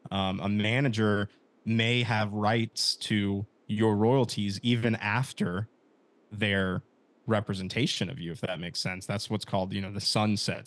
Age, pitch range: 20-39, 100-115 Hz